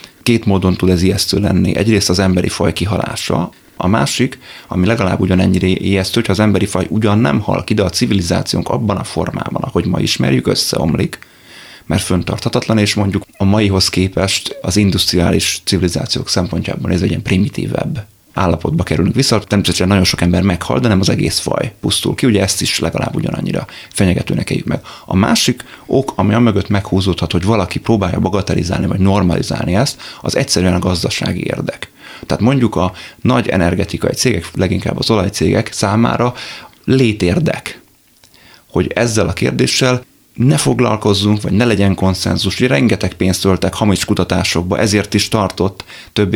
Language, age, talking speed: Hungarian, 30-49, 160 wpm